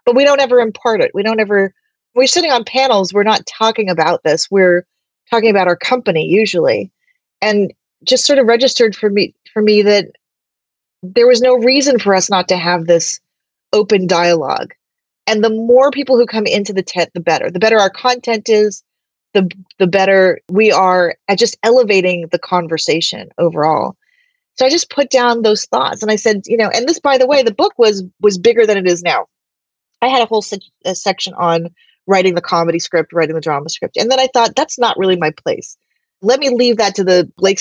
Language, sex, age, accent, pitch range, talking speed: English, female, 30-49, American, 180-240 Hz, 210 wpm